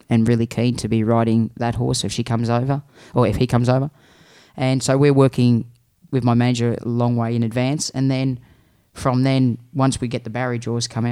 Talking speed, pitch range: 215 wpm, 115-125 Hz